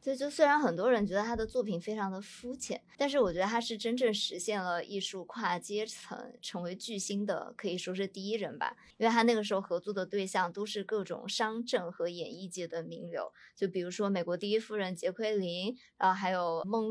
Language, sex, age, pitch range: Chinese, male, 20-39, 180-230 Hz